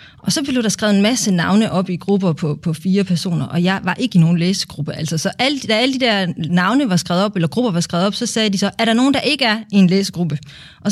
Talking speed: 285 wpm